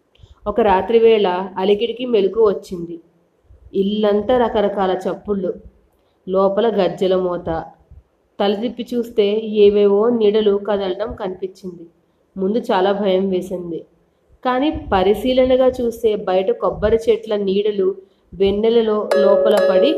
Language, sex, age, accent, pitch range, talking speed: Telugu, female, 30-49, native, 190-225 Hz, 95 wpm